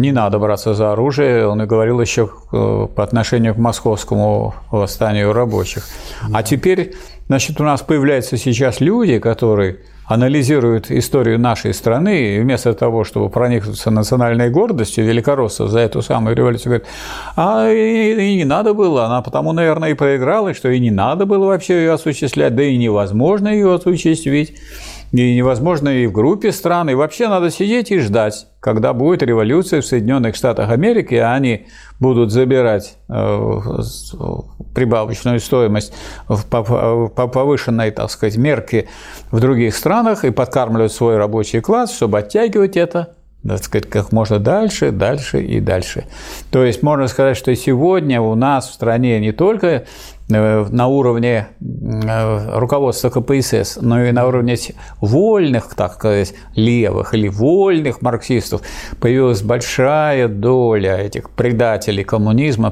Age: 50-69